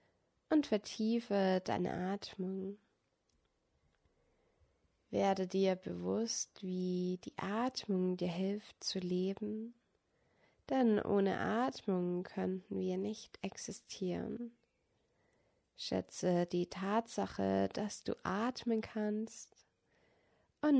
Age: 20-39